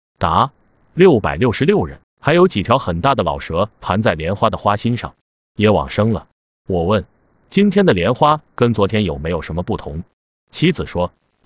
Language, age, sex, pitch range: Chinese, 30-49, male, 90-130 Hz